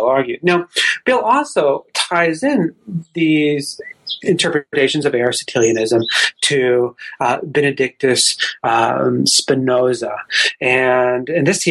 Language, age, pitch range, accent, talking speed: English, 30-49, 120-155 Hz, American, 95 wpm